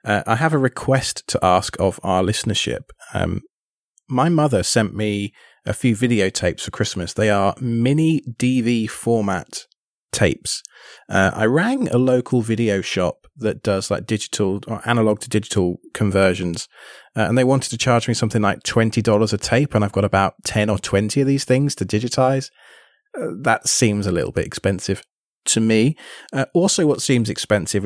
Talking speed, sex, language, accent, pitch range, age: 170 wpm, male, English, British, 105-130 Hz, 30-49